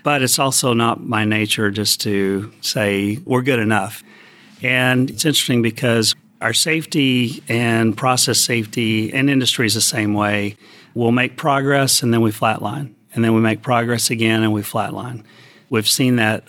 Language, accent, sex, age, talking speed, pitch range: English, American, male, 40-59, 165 wpm, 105-125 Hz